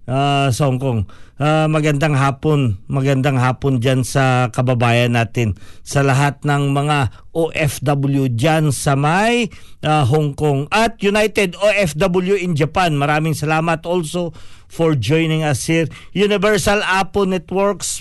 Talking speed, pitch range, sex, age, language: 130 wpm, 125-165 Hz, male, 50-69, Filipino